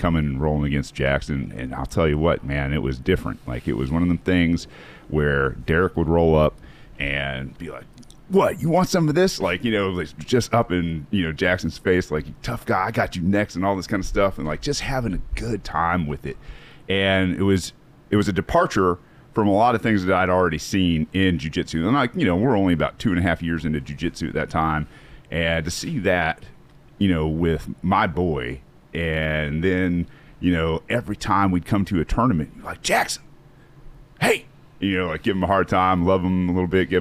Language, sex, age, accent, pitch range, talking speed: English, male, 40-59, American, 75-95 Hz, 230 wpm